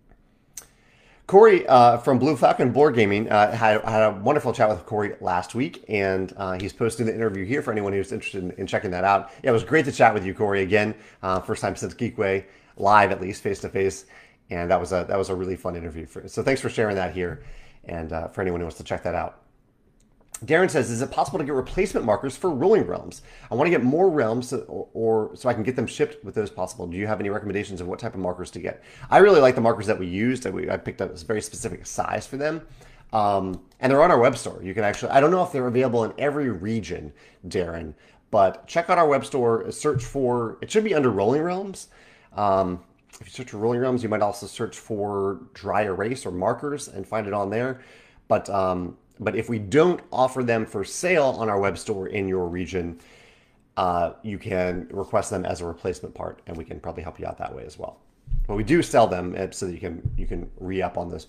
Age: 30-49